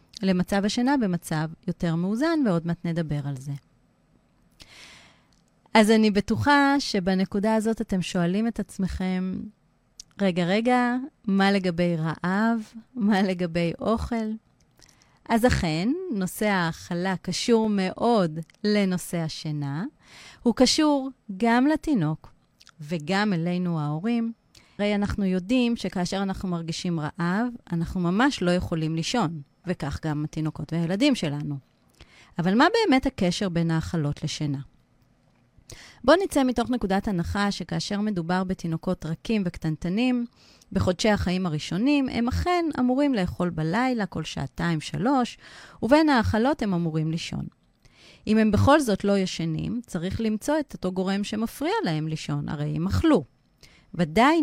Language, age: Hebrew, 30-49